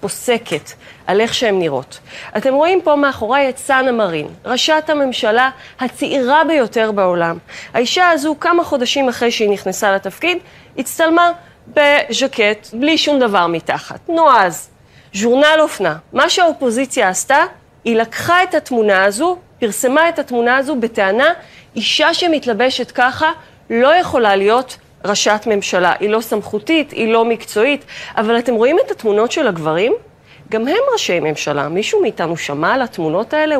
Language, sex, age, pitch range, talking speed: Hebrew, female, 30-49, 210-300 Hz, 140 wpm